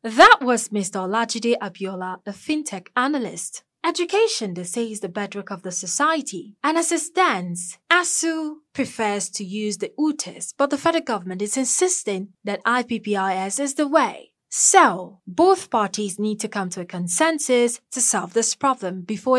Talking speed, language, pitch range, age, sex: 160 wpm, English, 200-300 Hz, 20-39, female